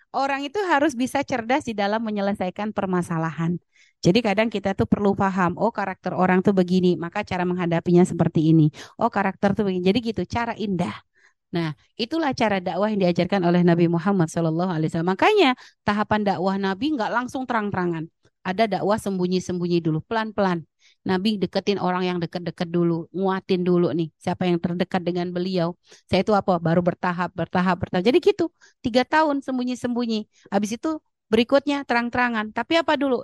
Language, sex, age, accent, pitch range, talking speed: Indonesian, female, 30-49, native, 180-230 Hz, 160 wpm